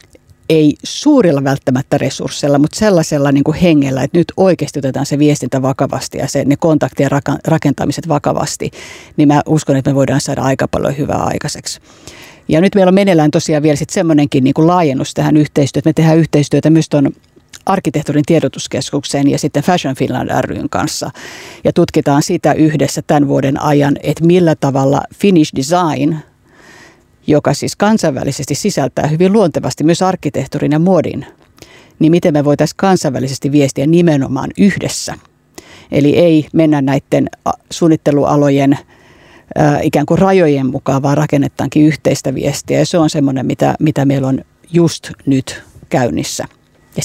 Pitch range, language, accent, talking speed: 140-160 Hz, Finnish, native, 145 wpm